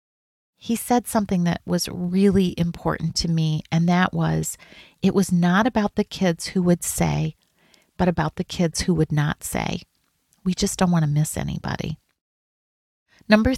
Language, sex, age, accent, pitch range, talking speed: English, female, 40-59, American, 160-195 Hz, 165 wpm